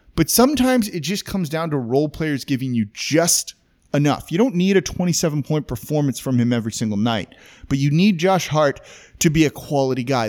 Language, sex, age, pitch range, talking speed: English, male, 30-49, 120-165 Hz, 200 wpm